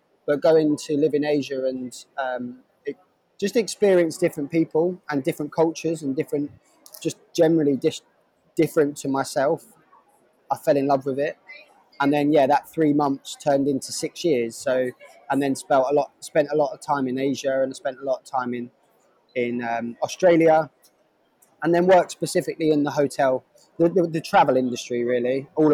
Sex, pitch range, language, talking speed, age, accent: male, 135-165 Hz, English, 180 wpm, 20-39, British